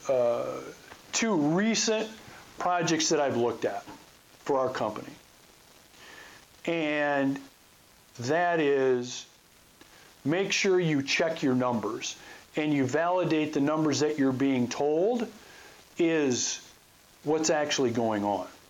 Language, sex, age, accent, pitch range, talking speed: English, male, 50-69, American, 120-155 Hz, 110 wpm